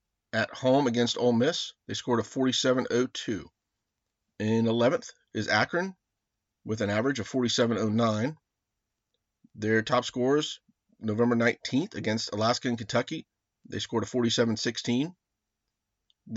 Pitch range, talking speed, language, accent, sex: 110-125 Hz, 115 wpm, English, American, male